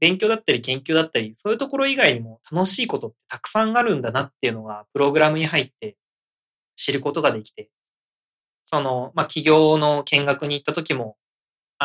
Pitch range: 125-200 Hz